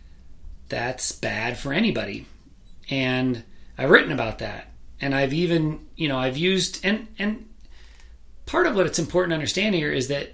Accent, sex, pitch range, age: American, male, 115-155 Hz, 40-59